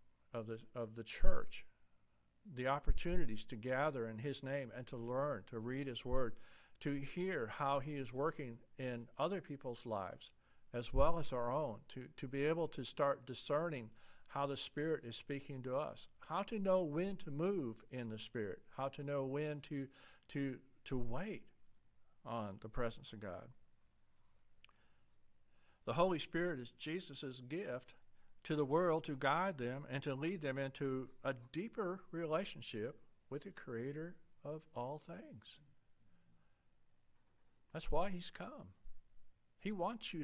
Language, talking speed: English, 155 wpm